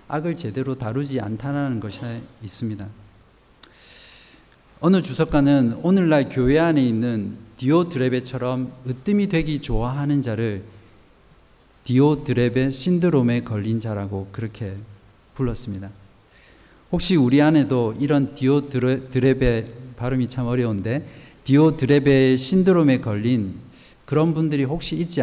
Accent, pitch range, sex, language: native, 110-145 Hz, male, Korean